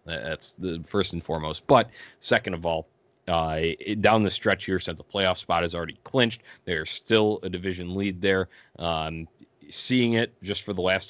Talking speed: 185 wpm